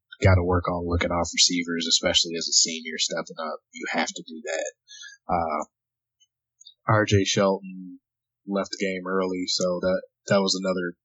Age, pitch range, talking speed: 20-39, 90-110 Hz, 155 wpm